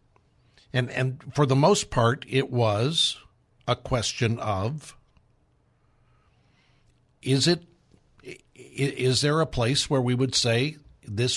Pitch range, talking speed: 115-140 Hz, 115 wpm